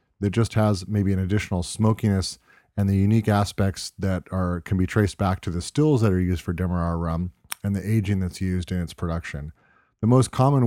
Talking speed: 210 wpm